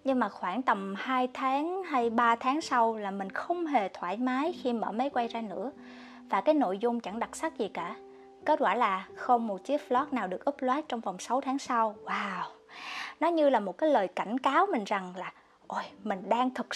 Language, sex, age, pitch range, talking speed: Vietnamese, female, 20-39, 200-275 Hz, 220 wpm